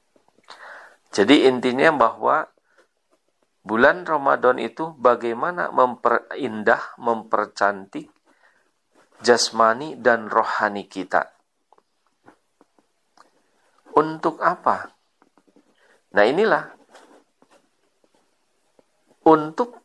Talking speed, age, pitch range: 55 wpm, 50-69, 115-160 Hz